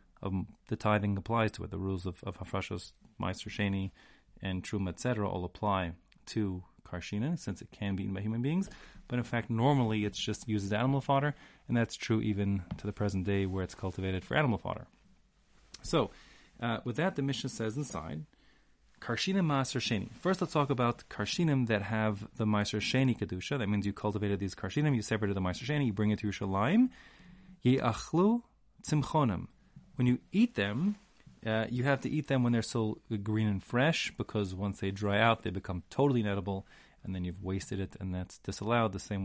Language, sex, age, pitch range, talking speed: English, male, 30-49, 100-130 Hz, 195 wpm